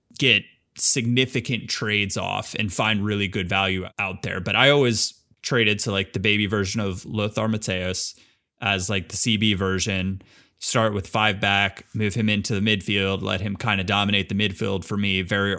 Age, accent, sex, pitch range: 20-39, American, male, 100-115 Hz